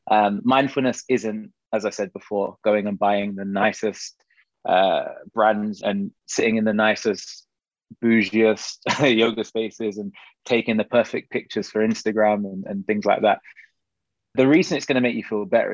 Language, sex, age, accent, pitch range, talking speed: English, male, 20-39, British, 100-120 Hz, 165 wpm